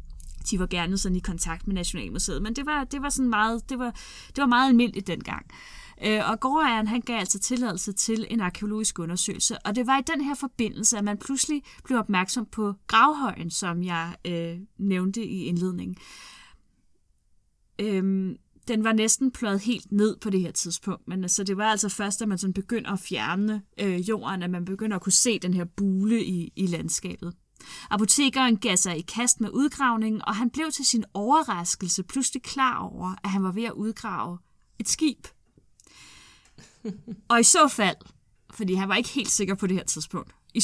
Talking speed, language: 190 wpm, Danish